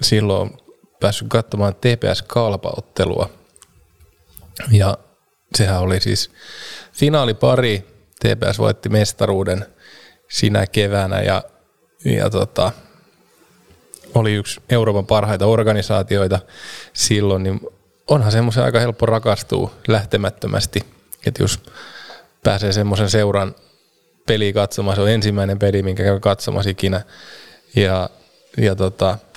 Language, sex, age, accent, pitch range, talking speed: Finnish, male, 20-39, native, 100-110 Hz, 100 wpm